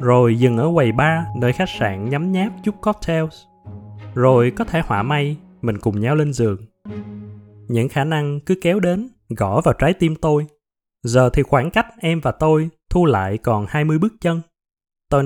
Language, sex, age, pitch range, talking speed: Vietnamese, male, 20-39, 115-170 Hz, 185 wpm